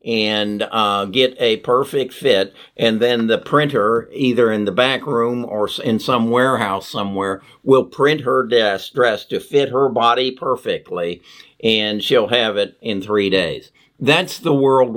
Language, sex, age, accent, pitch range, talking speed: English, male, 50-69, American, 110-140 Hz, 160 wpm